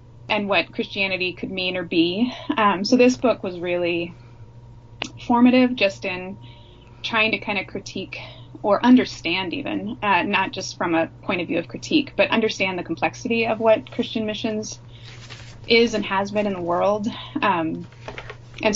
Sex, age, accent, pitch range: female, 20-39, American, 165-210 Hz